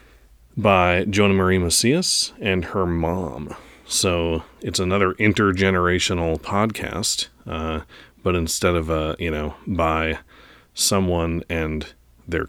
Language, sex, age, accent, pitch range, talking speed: English, male, 30-49, American, 80-105 Hz, 110 wpm